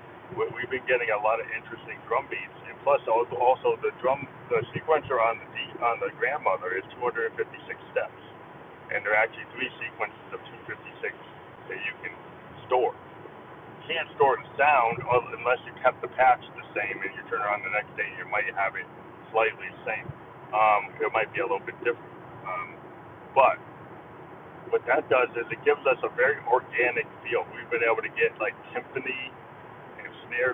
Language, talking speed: English, 180 wpm